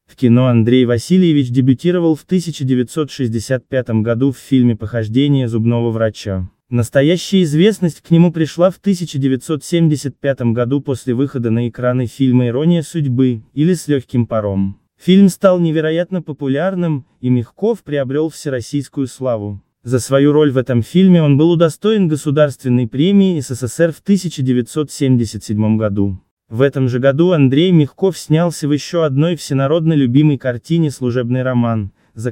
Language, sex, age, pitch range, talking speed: Russian, male, 20-39, 120-155 Hz, 135 wpm